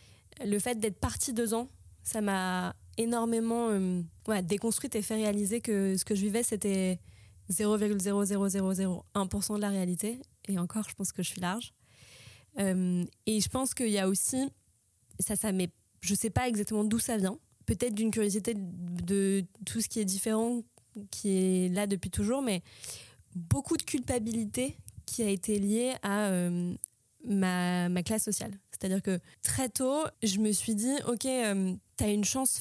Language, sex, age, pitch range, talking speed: French, female, 20-39, 190-225 Hz, 170 wpm